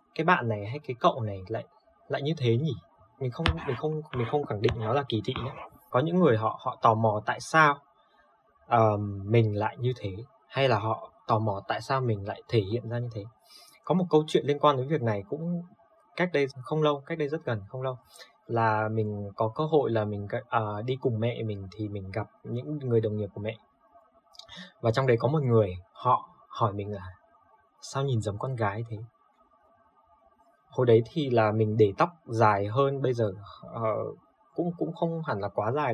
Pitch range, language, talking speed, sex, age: 110-145 Hz, Vietnamese, 215 wpm, male, 20-39